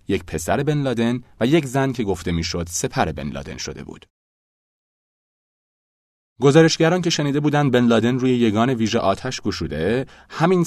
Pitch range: 85-130 Hz